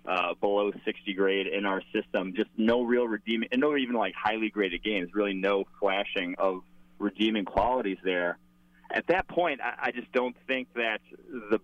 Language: English